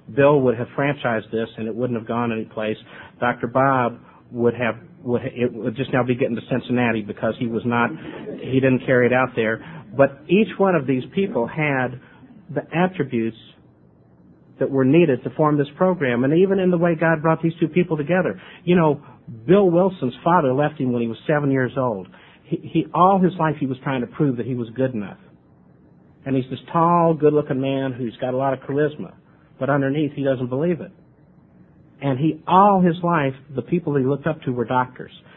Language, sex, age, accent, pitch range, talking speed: English, male, 50-69, American, 125-160 Hz, 205 wpm